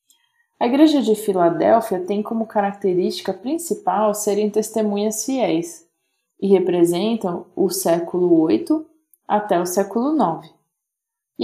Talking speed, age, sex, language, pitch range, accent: 110 wpm, 20-39, female, Portuguese, 180-255 Hz, Brazilian